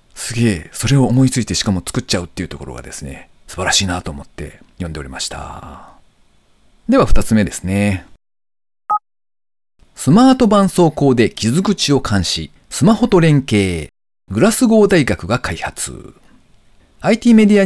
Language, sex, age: Japanese, male, 40-59